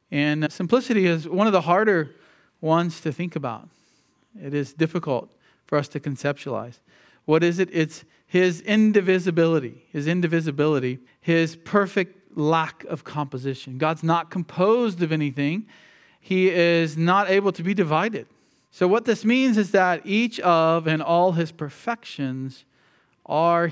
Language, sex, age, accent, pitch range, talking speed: English, male, 40-59, American, 145-180 Hz, 140 wpm